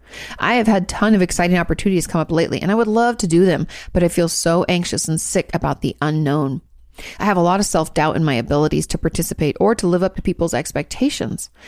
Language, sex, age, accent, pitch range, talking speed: English, female, 30-49, American, 150-205 Hz, 230 wpm